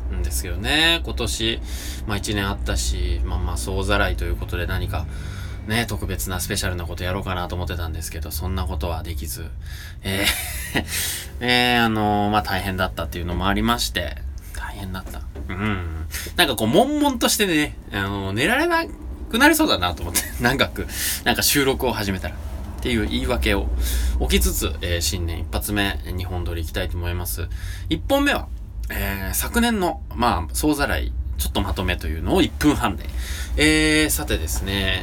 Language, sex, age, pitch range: Japanese, male, 20-39, 75-100 Hz